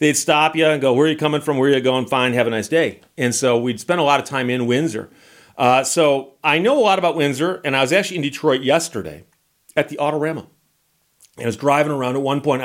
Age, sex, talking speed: 40-59, male, 260 wpm